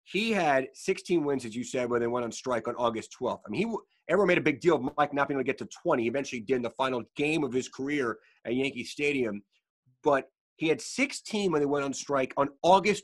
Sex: male